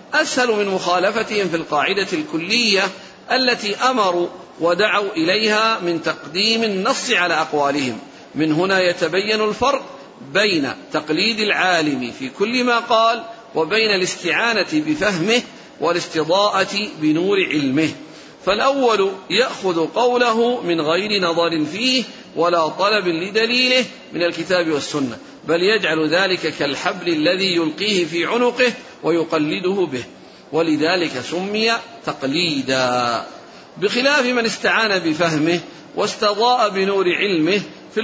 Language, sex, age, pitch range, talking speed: Arabic, male, 50-69, 165-230 Hz, 105 wpm